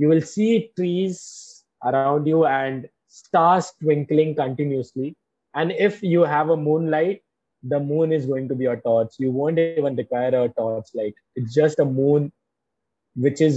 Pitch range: 130-175 Hz